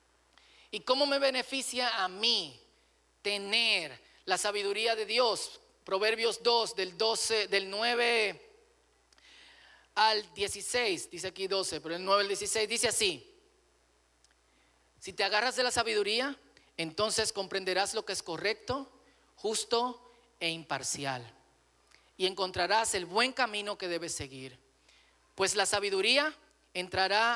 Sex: male